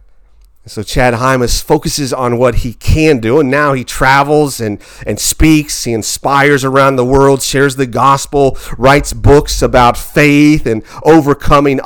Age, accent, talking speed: 40-59, American, 150 wpm